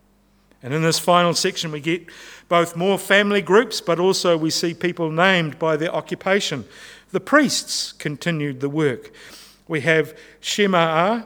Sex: male